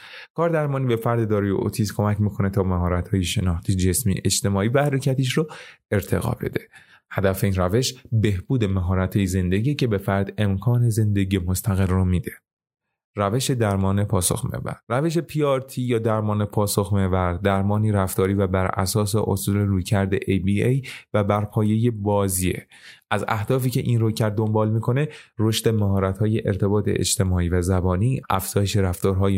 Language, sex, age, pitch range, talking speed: Persian, male, 30-49, 95-120 Hz, 145 wpm